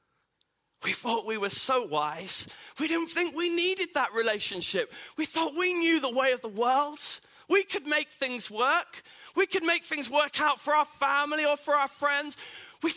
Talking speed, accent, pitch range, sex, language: 190 wpm, British, 205-270 Hz, male, English